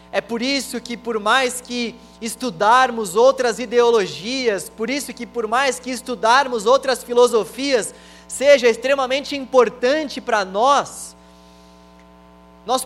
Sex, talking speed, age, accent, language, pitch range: male, 115 wpm, 20-39, Brazilian, Portuguese, 195-265 Hz